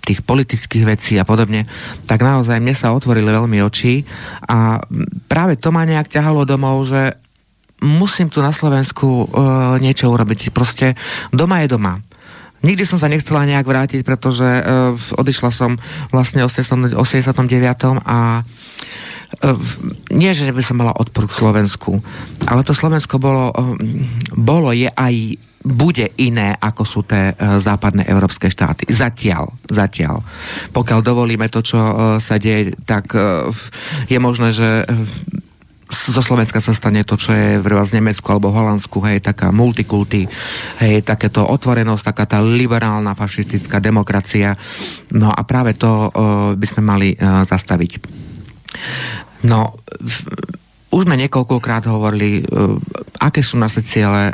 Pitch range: 105-130 Hz